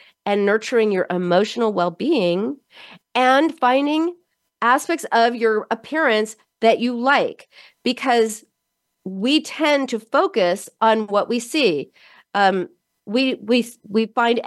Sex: female